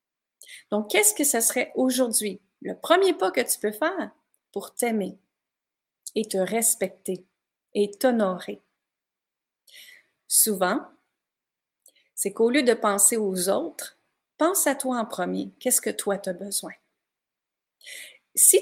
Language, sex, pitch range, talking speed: French, female, 200-290 Hz, 130 wpm